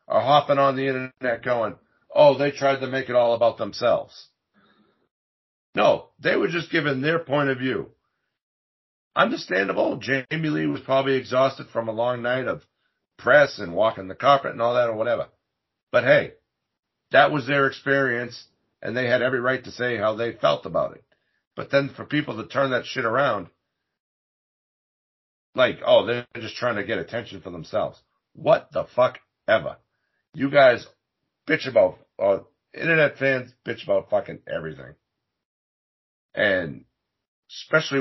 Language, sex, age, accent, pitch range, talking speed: English, male, 50-69, American, 115-145 Hz, 155 wpm